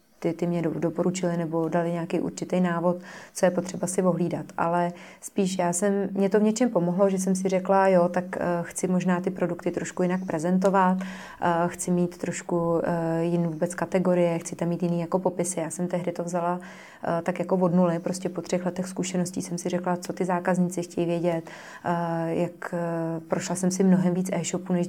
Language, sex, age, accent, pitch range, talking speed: Czech, female, 20-39, native, 170-185 Hz, 190 wpm